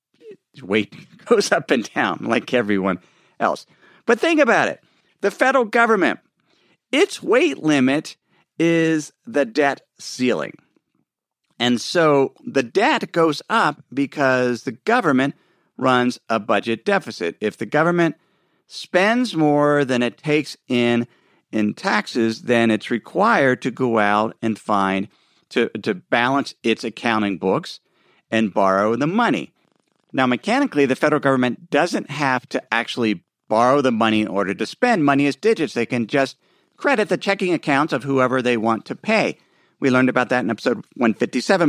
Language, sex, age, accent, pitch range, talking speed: English, male, 50-69, American, 110-155 Hz, 150 wpm